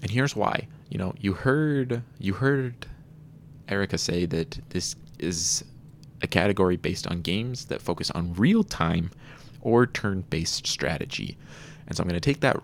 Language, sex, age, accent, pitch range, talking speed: English, male, 20-39, American, 85-145 Hz, 160 wpm